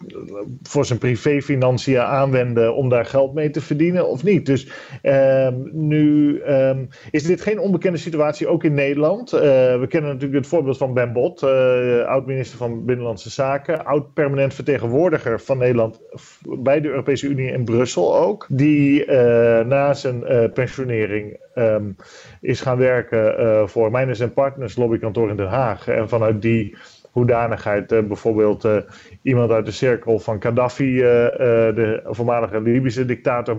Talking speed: 140 wpm